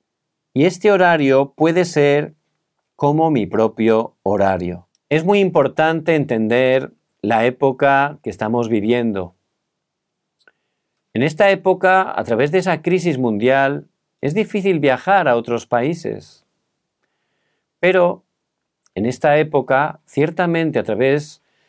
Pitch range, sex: 120-165 Hz, male